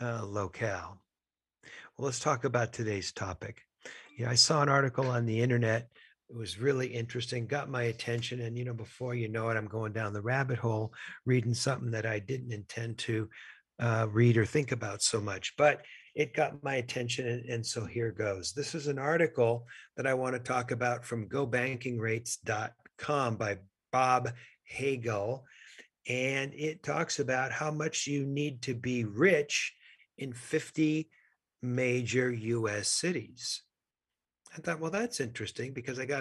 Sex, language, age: male, English, 50-69